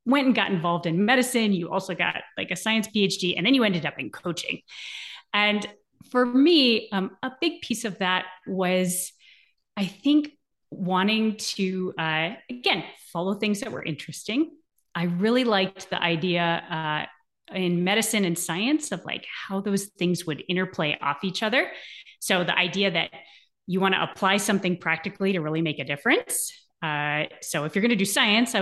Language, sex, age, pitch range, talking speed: English, female, 30-49, 175-225 Hz, 175 wpm